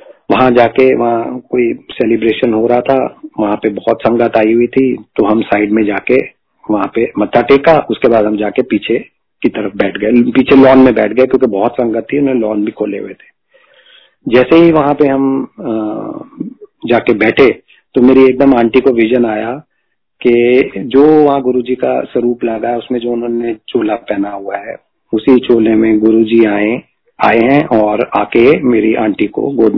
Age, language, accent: 40-59, Hindi, native